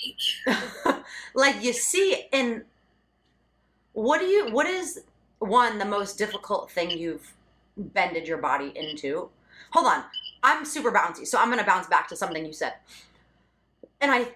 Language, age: English, 30-49